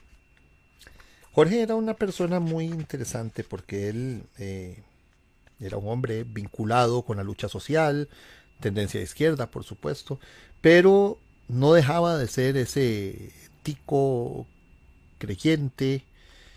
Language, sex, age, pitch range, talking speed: Spanish, male, 40-59, 105-145 Hz, 110 wpm